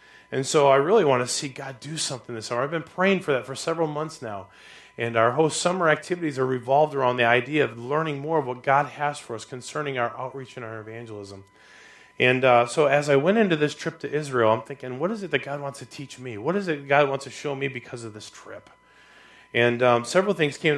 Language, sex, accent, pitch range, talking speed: English, male, American, 115-145 Hz, 245 wpm